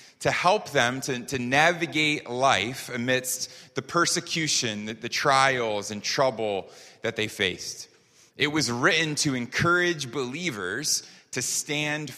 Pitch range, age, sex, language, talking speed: 120-160 Hz, 30-49, male, English, 130 wpm